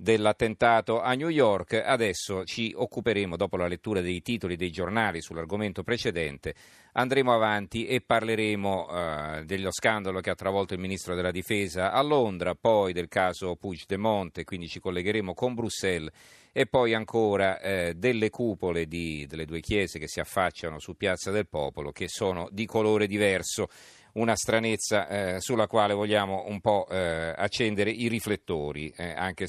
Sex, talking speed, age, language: male, 160 wpm, 40-59, Italian